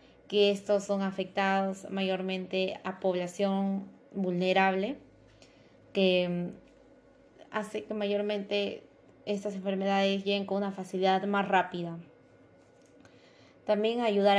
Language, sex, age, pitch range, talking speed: Spanish, female, 20-39, 185-205 Hz, 90 wpm